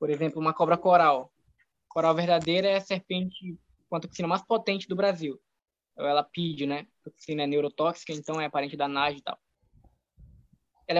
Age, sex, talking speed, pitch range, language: 10-29, female, 175 wpm, 155-185 Hz, Portuguese